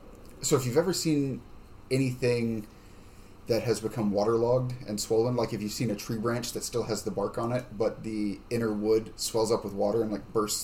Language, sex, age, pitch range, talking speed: English, male, 10-29, 105-120 Hz, 210 wpm